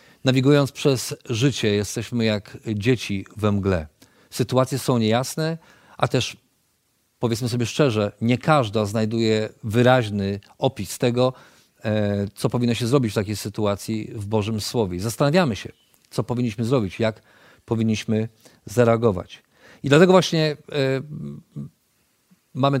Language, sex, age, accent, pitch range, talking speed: Polish, male, 40-59, native, 110-135 Hz, 115 wpm